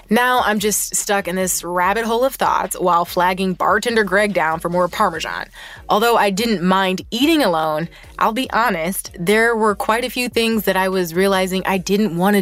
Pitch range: 195-255 Hz